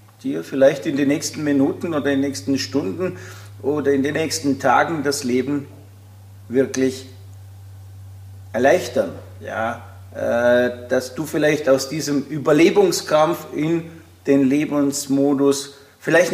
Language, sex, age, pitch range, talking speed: German, male, 40-59, 120-145 Hz, 115 wpm